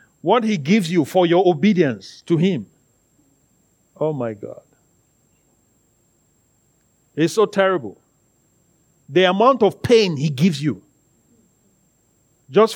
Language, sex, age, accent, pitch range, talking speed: English, male, 50-69, Nigerian, 145-220 Hz, 110 wpm